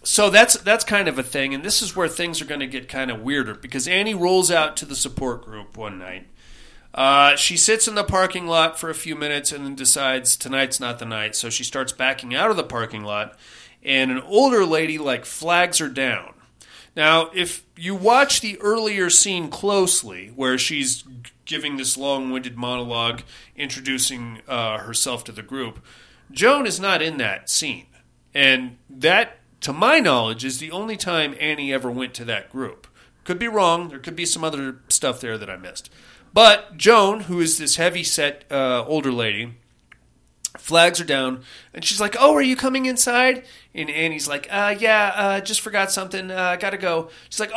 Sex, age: male, 40-59